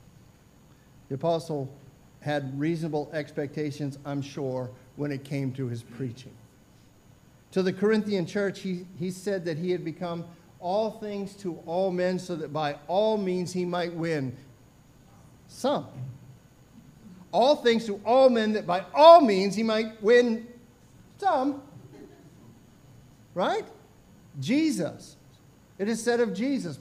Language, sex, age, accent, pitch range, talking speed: English, male, 50-69, American, 165-235 Hz, 130 wpm